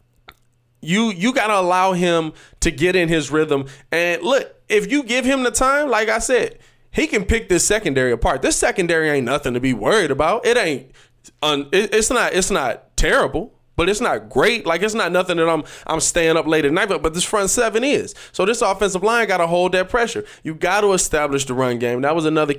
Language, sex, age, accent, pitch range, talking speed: English, male, 20-39, American, 135-210 Hz, 220 wpm